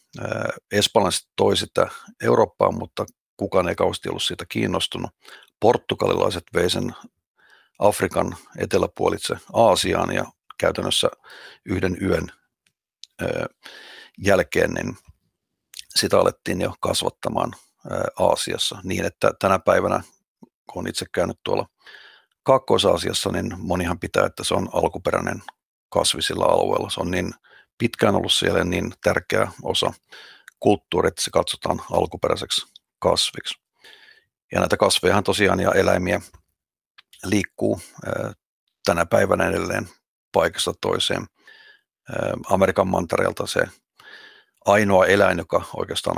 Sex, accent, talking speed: male, native, 100 wpm